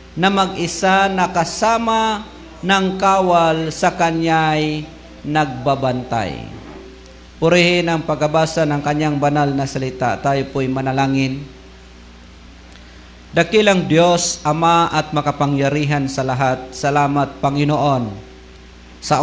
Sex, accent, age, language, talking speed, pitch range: male, native, 50-69, Filipino, 85 wpm, 130-160 Hz